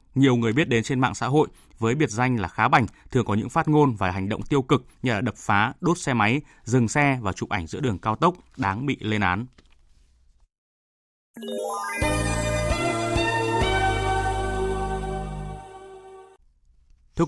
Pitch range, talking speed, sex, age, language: 110-140 Hz, 155 wpm, male, 20-39, Vietnamese